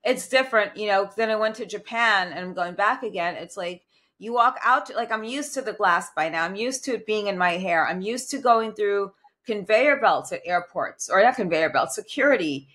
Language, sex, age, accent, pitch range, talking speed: English, female, 30-49, American, 185-245 Hz, 230 wpm